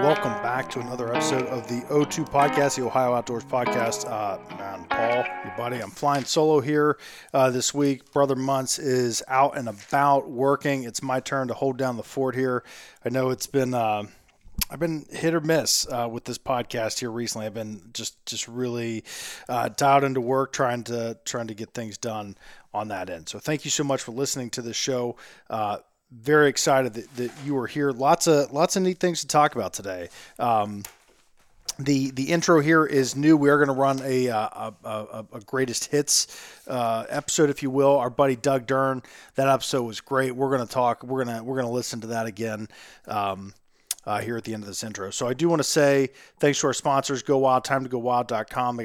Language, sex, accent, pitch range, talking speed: English, male, American, 115-140 Hz, 215 wpm